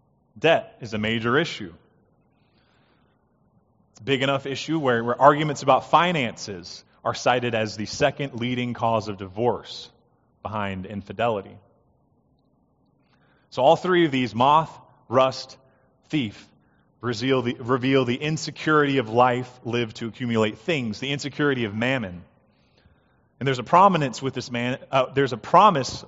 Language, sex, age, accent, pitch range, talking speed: English, male, 30-49, American, 110-135 Hz, 135 wpm